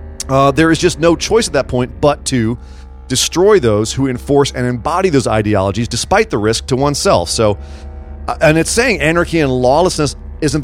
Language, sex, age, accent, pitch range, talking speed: English, male, 30-49, American, 105-145 Hz, 180 wpm